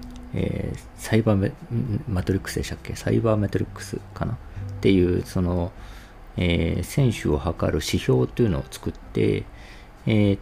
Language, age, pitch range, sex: Japanese, 40-59, 90-110 Hz, male